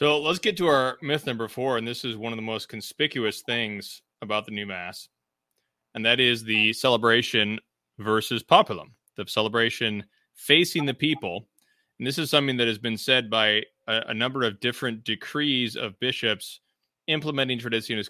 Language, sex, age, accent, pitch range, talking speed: English, male, 30-49, American, 110-135 Hz, 170 wpm